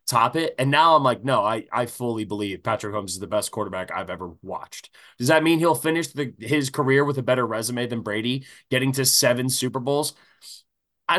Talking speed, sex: 210 wpm, male